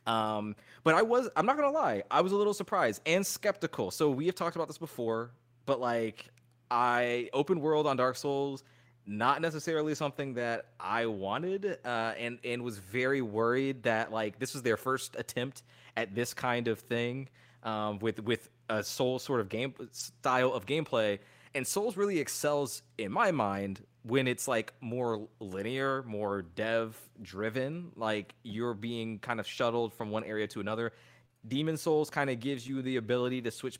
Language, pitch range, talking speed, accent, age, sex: English, 115-145 Hz, 180 wpm, American, 20-39, male